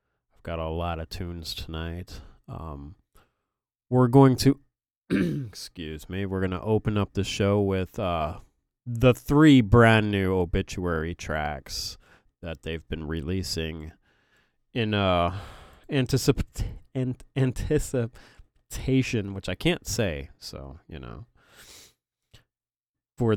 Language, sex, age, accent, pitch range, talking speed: English, male, 30-49, American, 80-110 Hz, 110 wpm